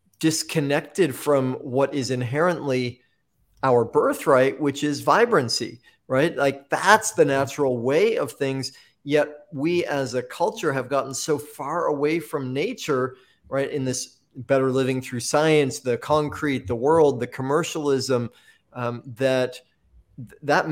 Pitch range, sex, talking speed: 130-150 Hz, male, 135 wpm